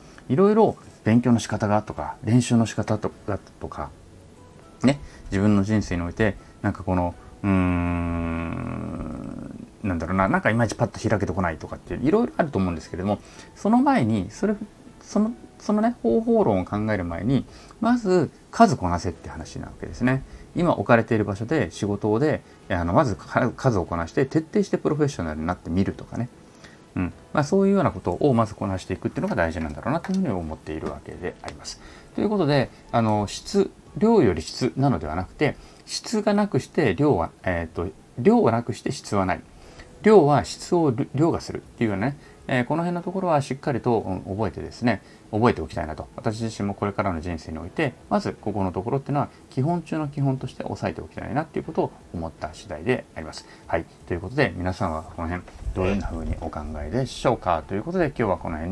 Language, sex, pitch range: Japanese, male, 90-135 Hz